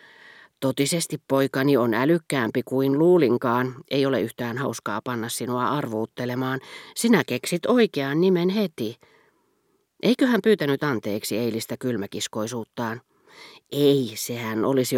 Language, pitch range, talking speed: Finnish, 120-155 Hz, 105 wpm